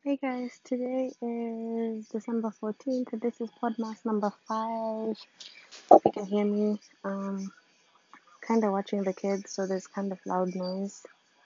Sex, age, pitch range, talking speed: female, 20-39, 180-210 Hz, 150 wpm